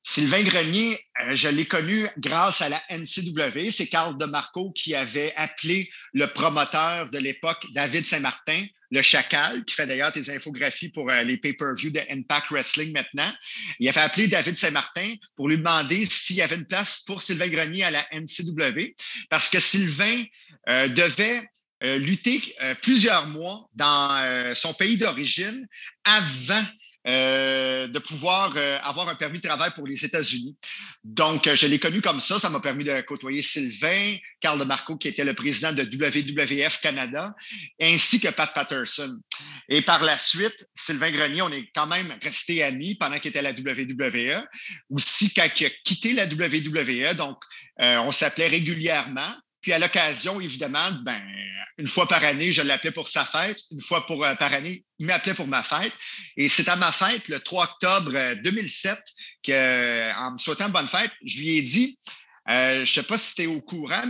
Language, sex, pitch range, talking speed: French, male, 145-190 Hz, 180 wpm